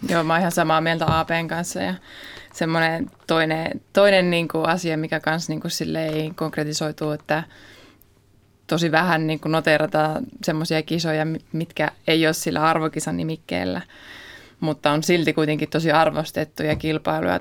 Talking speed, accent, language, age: 140 wpm, native, Finnish, 20-39